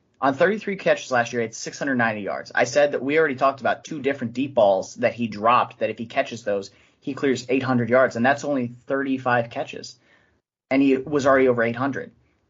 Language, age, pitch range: English, 30-49, 115-135 Hz